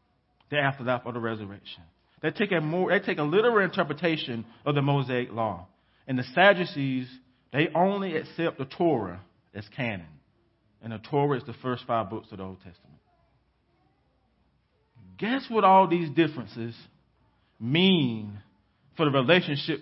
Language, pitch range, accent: English, 115-175 Hz, American